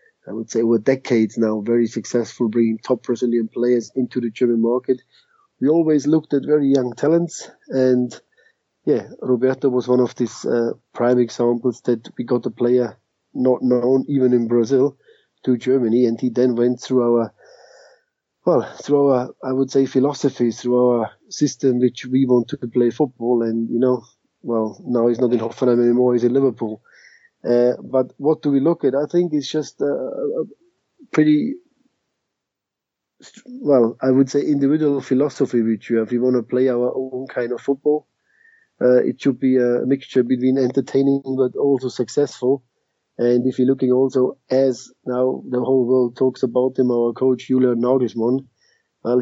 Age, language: 30-49, English